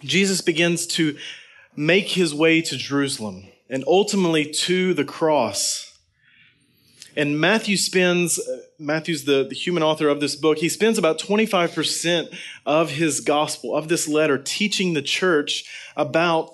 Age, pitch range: 30-49, 150-180 Hz